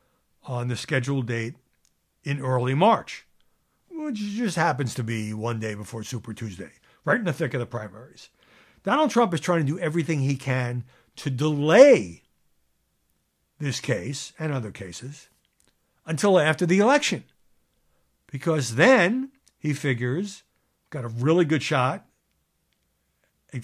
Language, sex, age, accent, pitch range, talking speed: English, male, 60-79, American, 120-190 Hz, 135 wpm